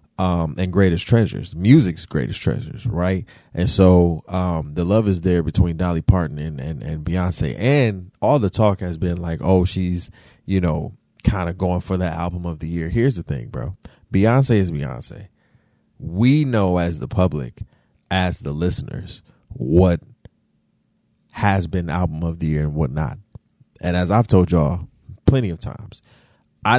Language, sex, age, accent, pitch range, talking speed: English, male, 30-49, American, 85-110 Hz, 170 wpm